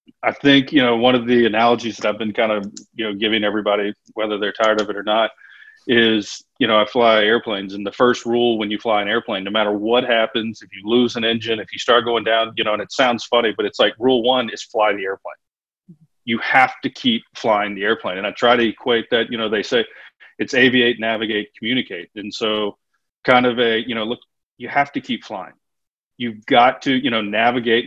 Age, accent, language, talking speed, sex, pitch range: 40-59, American, English, 235 wpm, male, 105-125 Hz